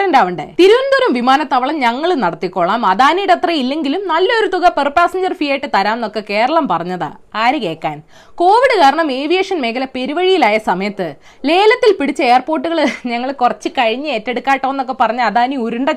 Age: 20-39